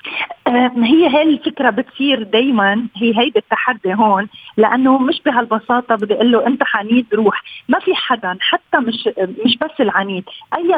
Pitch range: 215-265 Hz